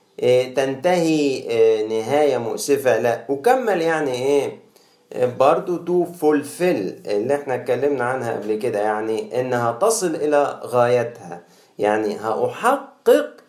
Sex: male